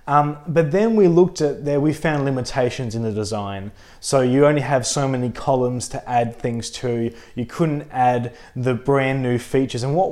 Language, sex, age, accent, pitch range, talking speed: English, male, 20-39, Australian, 120-150 Hz, 195 wpm